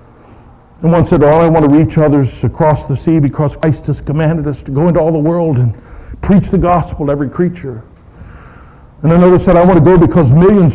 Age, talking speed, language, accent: 60-79, 220 wpm, English, American